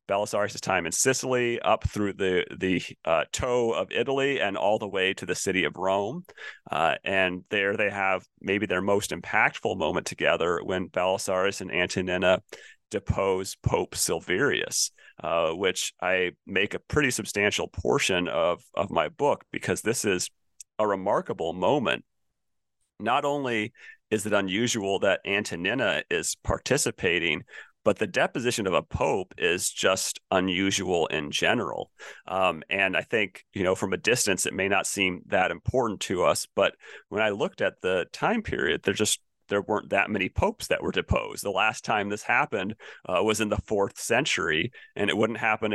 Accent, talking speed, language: American, 165 wpm, English